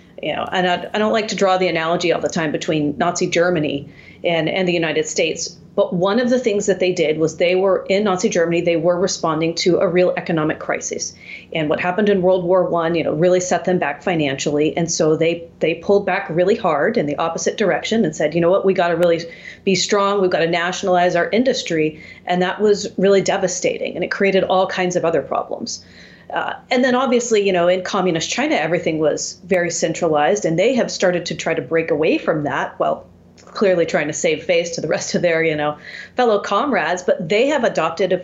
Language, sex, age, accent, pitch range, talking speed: English, female, 40-59, American, 170-195 Hz, 225 wpm